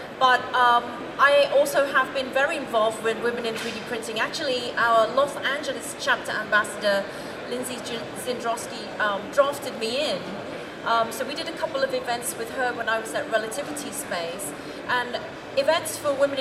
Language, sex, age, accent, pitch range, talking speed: English, female, 30-49, British, 230-280 Hz, 165 wpm